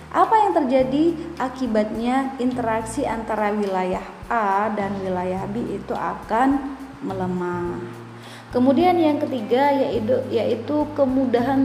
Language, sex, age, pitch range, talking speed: Indonesian, female, 20-39, 200-275 Hz, 105 wpm